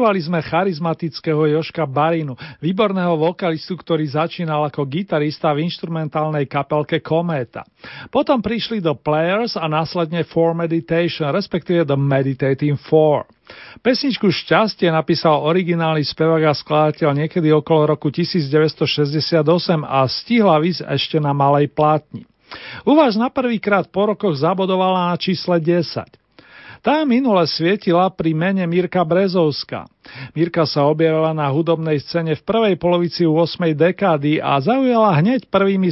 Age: 40-59